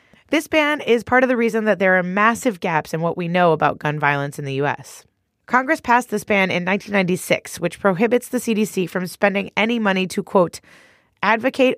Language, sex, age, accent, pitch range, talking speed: English, female, 20-39, American, 170-225 Hz, 200 wpm